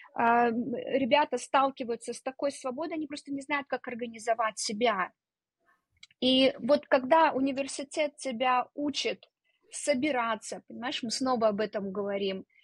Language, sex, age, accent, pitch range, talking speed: Russian, female, 20-39, native, 220-275 Hz, 120 wpm